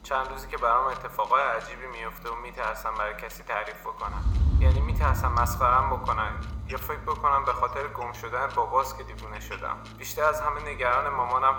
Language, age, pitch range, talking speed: Persian, 20-39, 105-145 Hz, 170 wpm